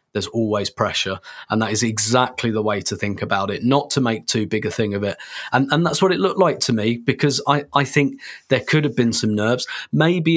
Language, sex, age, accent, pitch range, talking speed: English, male, 30-49, British, 110-130 Hz, 245 wpm